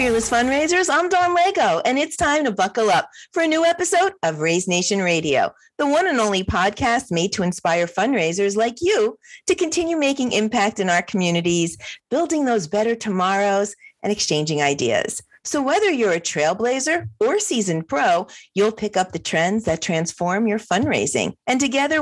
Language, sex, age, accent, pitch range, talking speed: English, female, 40-59, American, 175-275 Hz, 170 wpm